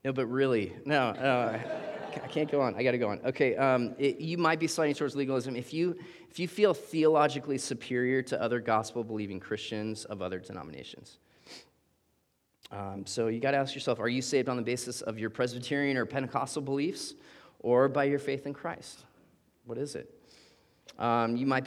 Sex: male